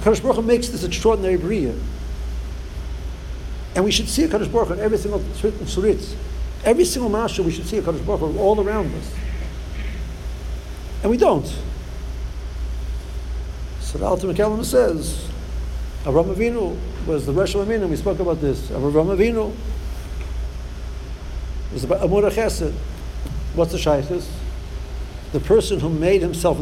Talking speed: 130 wpm